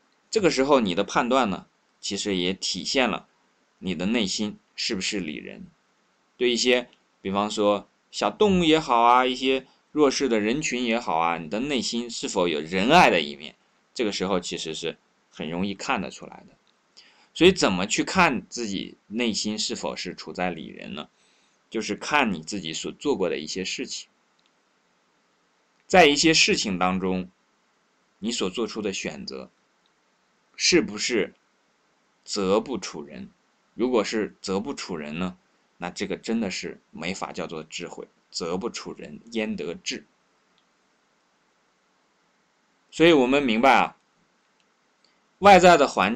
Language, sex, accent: Chinese, male, native